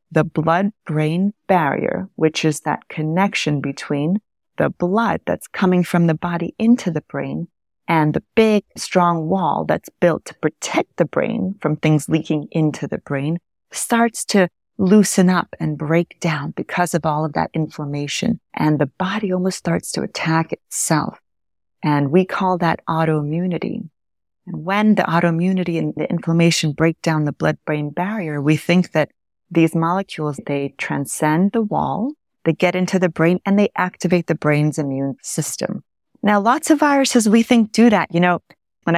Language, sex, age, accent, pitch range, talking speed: English, female, 30-49, American, 155-195 Hz, 160 wpm